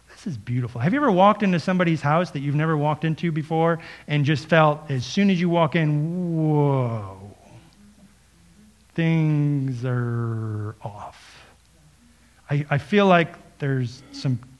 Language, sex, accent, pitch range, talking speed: English, male, American, 135-180 Hz, 140 wpm